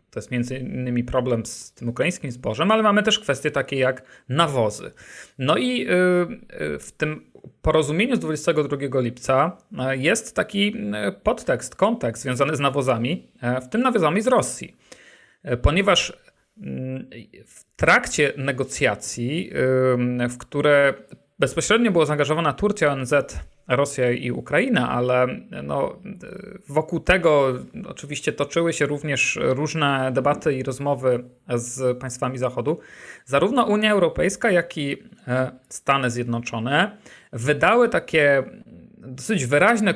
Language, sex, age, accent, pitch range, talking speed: Polish, male, 40-59, native, 125-165 Hz, 115 wpm